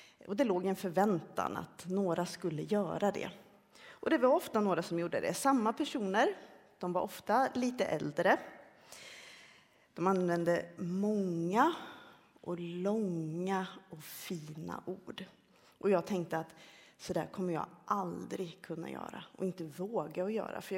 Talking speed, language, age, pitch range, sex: 140 wpm, Swedish, 30-49, 175-235 Hz, female